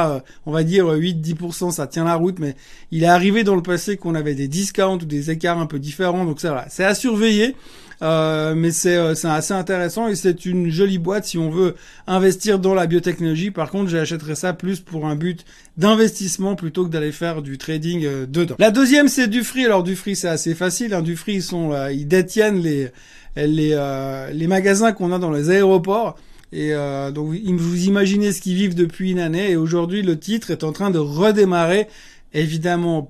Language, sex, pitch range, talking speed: French, male, 165-200 Hz, 205 wpm